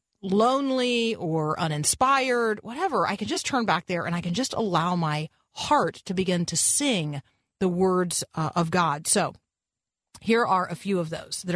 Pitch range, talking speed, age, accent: 165-210 Hz, 175 wpm, 40-59, American